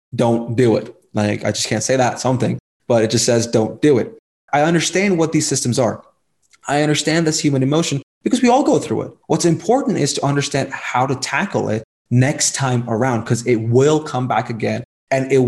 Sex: male